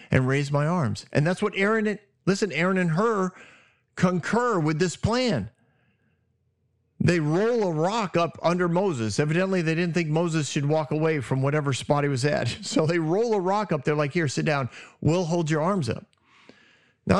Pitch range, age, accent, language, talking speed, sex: 130-175 Hz, 40-59, American, English, 190 wpm, male